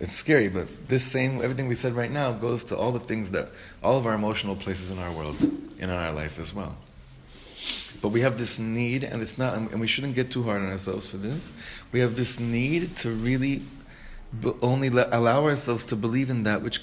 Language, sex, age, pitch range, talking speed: English, male, 30-49, 100-130 Hz, 220 wpm